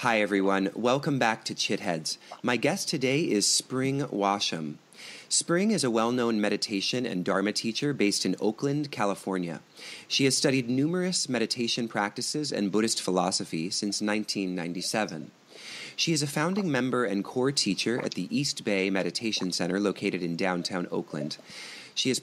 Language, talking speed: English, 150 wpm